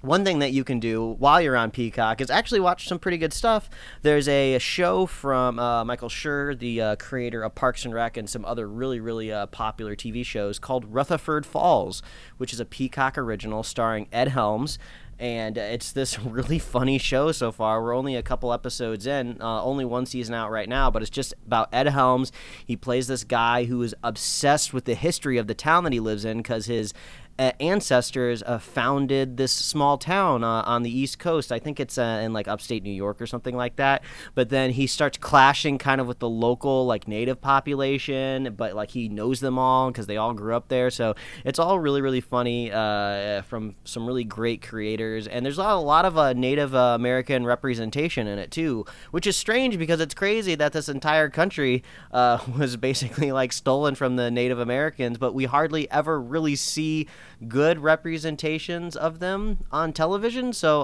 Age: 30-49